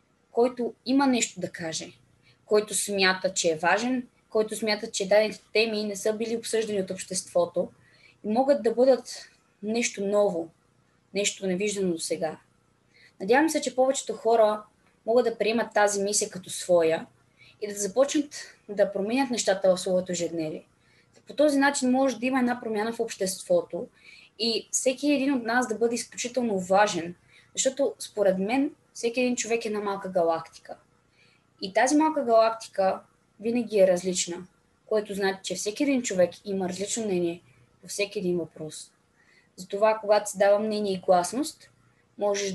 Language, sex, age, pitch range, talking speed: Bulgarian, female, 20-39, 180-230 Hz, 155 wpm